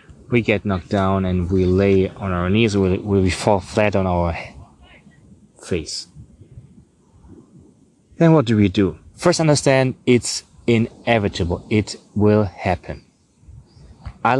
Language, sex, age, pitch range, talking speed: English, male, 20-39, 95-115 Hz, 125 wpm